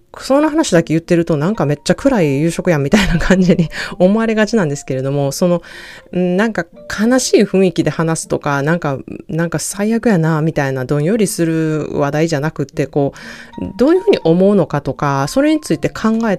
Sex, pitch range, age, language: female, 140-190 Hz, 20-39, Japanese